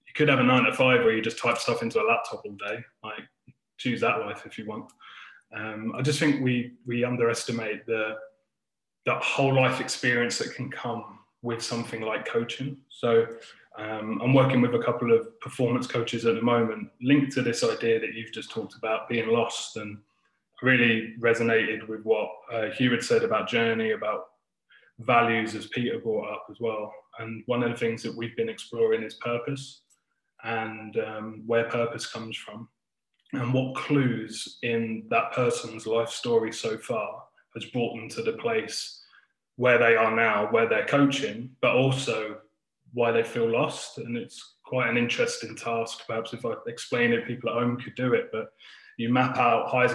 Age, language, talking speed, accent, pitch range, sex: 20-39, English, 185 wpm, British, 115-130 Hz, male